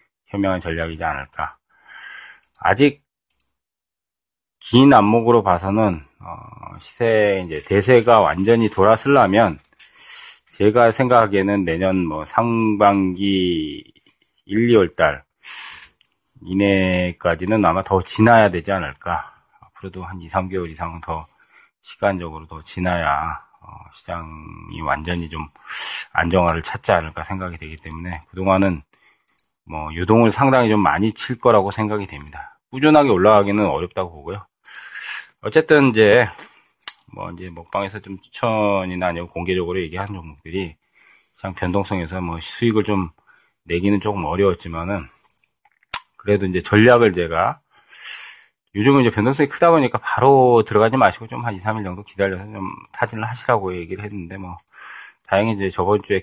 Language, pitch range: Korean, 85-110 Hz